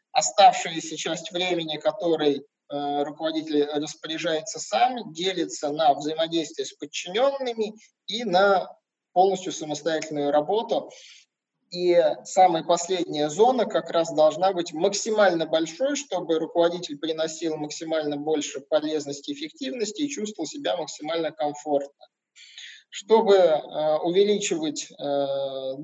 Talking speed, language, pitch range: 100 wpm, Russian, 155-200 Hz